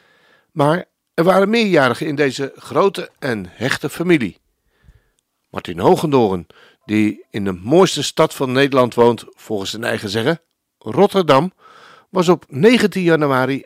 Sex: male